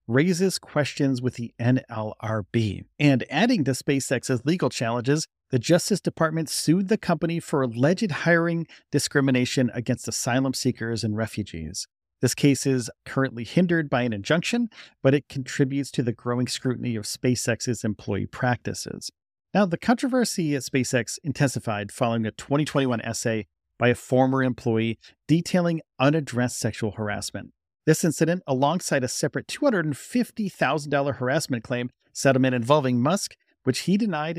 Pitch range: 115-150 Hz